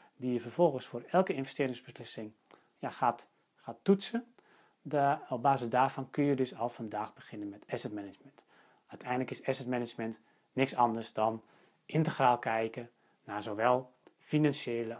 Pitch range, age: 115-140 Hz, 30-49